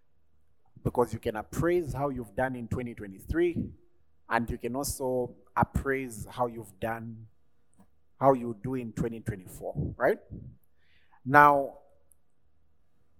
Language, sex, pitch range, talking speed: English, male, 100-135 Hz, 110 wpm